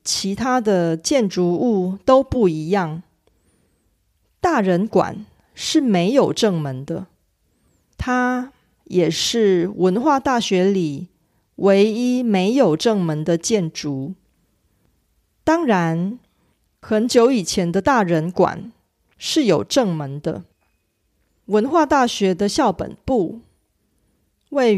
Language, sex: Korean, female